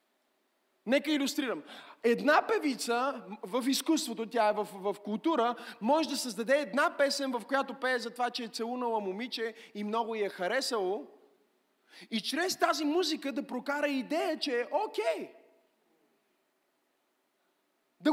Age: 30-49